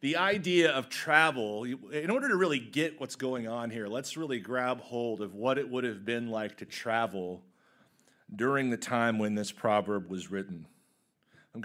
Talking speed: 185 wpm